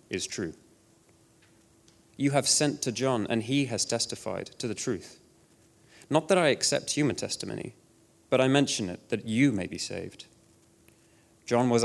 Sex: male